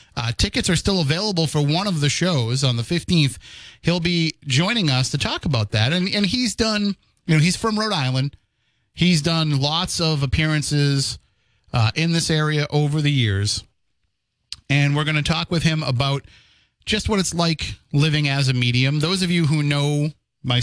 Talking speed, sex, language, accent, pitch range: 190 wpm, male, English, American, 120-160 Hz